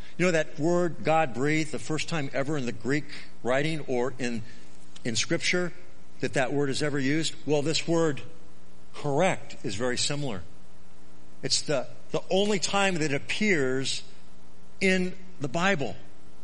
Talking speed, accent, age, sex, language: 155 wpm, American, 50-69, male, English